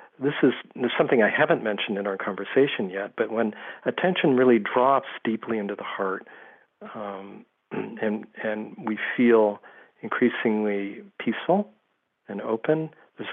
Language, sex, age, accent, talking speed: English, male, 50-69, American, 130 wpm